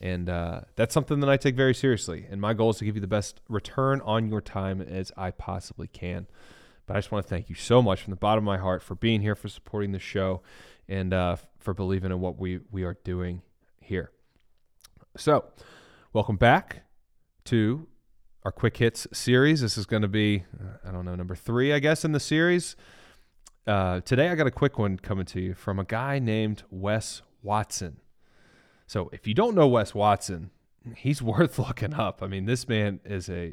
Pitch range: 95-120 Hz